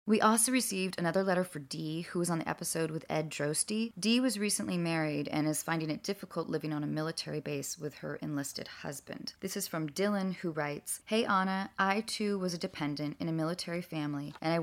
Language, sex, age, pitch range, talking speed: English, female, 30-49, 150-175 Hz, 215 wpm